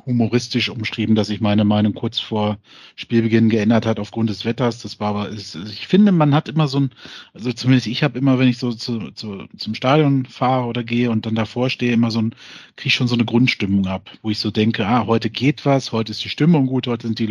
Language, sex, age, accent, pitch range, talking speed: German, male, 40-59, German, 110-125 Hz, 230 wpm